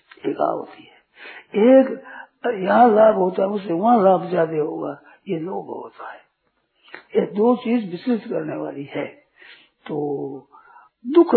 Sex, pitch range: male, 180-240 Hz